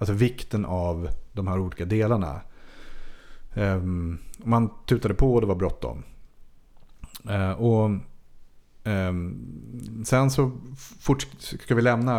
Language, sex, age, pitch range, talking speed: Swedish, male, 30-49, 95-120 Hz, 110 wpm